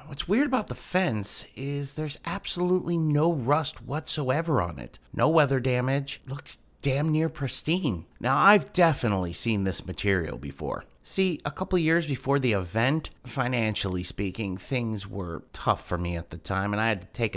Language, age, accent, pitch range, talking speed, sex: English, 30-49, American, 95-135 Hz, 170 wpm, male